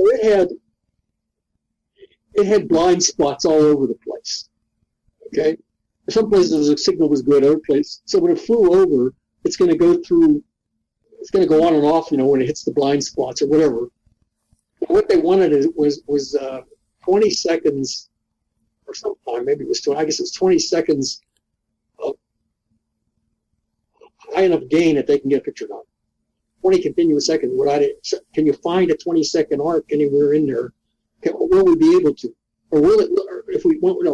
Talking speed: 185 wpm